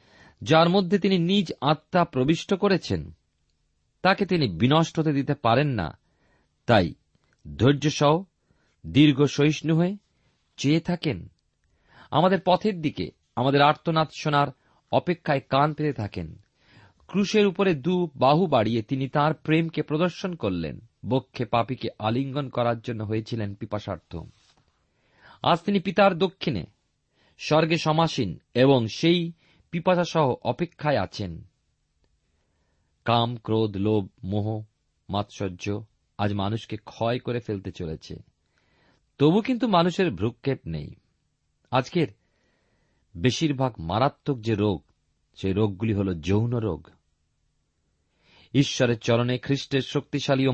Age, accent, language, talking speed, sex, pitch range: 40-59, native, Bengali, 105 wpm, male, 95-150 Hz